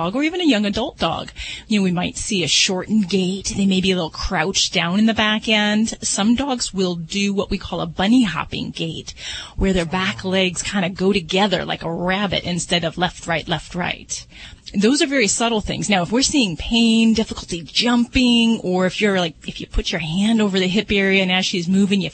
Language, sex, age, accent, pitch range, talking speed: English, female, 30-49, American, 175-220 Hz, 225 wpm